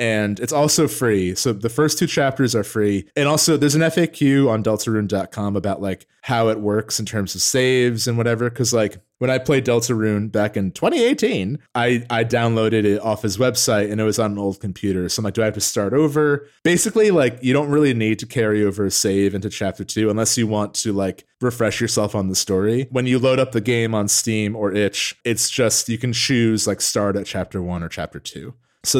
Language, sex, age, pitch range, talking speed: English, male, 30-49, 105-130 Hz, 225 wpm